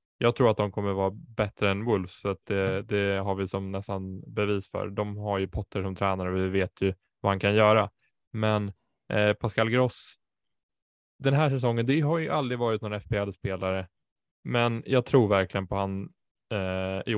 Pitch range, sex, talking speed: 100-115 Hz, male, 180 wpm